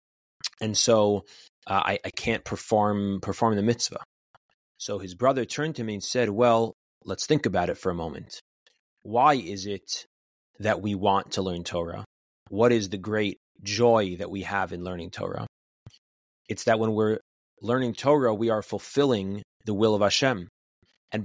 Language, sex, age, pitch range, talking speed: English, male, 30-49, 95-115 Hz, 170 wpm